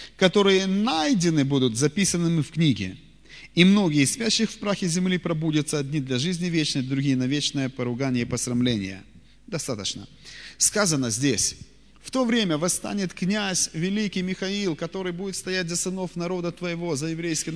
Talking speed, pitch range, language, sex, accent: 145 wpm, 130-180 Hz, Russian, male, native